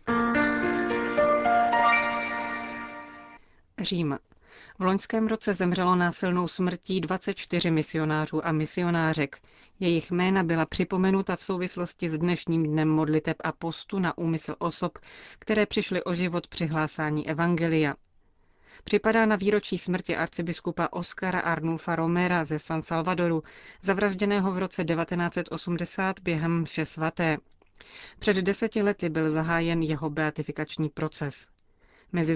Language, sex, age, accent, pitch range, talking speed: Czech, female, 30-49, native, 160-185 Hz, 110 wpm